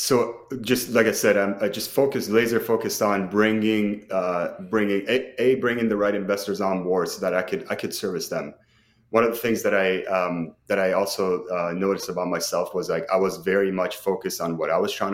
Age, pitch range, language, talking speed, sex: 30-49, 90-110 Hz, English, 220 wpm, male